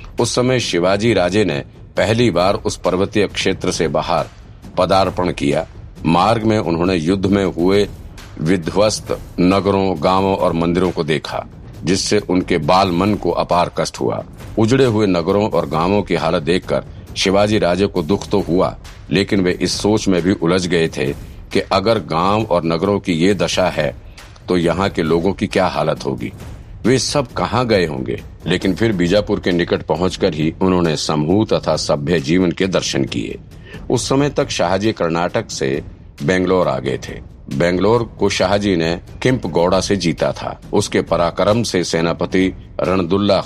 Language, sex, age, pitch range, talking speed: Hindi, male, 50-69, 85-100 Hz, 165 wpm